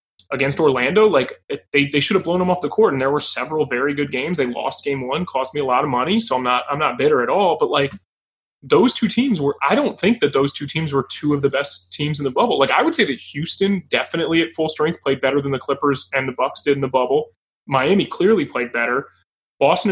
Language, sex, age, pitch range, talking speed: English, male, 20-39, 125-160 Hz, 260 wpm